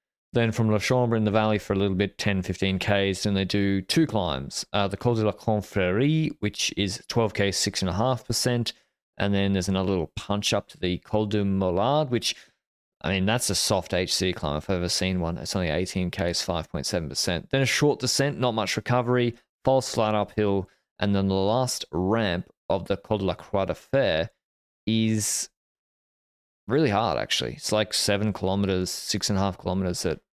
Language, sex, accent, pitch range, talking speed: English, male, Australian, 95-125 Hz, 190 wpm